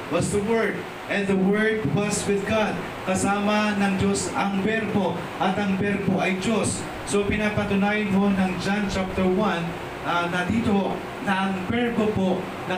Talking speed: 155 wpm